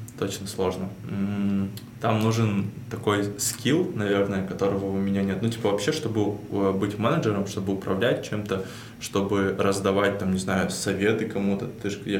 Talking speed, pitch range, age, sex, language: 150 wpm, 100-110 Hz, 20-39, male, Russian